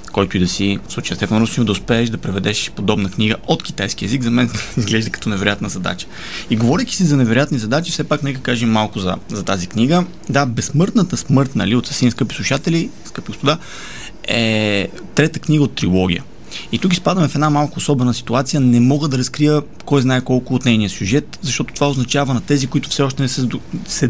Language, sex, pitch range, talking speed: Bulgarian, male, 110-145 Hz, 200 wpm